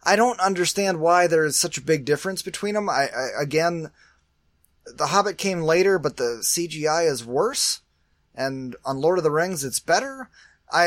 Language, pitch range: English, 125-170 Hz